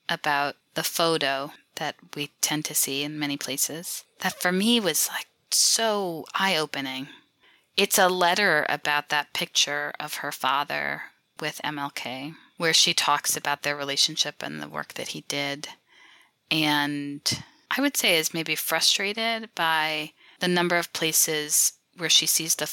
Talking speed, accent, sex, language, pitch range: 150 wpm, American, female, English, 145-170 Hz